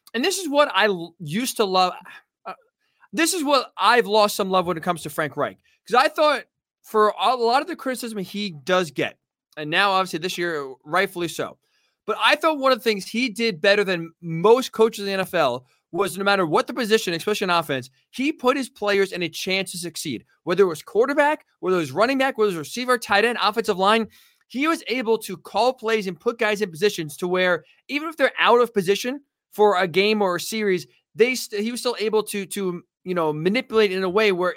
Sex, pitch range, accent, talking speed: male, 180-235 Hz, American, 230 wpm